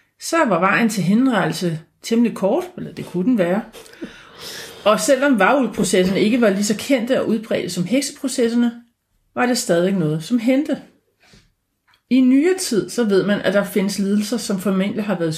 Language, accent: Danish, native